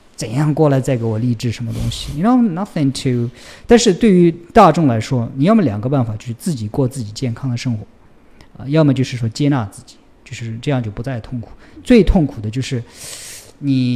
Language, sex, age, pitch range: Chinese, male, 50-69, 115-150 Hz